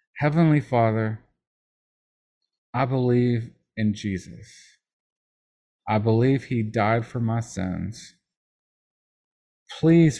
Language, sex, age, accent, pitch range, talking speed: English, male, 40-59, American, 100-120 Hz, 80 wpm